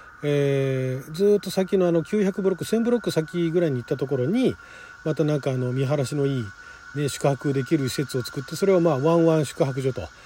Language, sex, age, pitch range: Japanese, male, 40-59, 135-205 Hz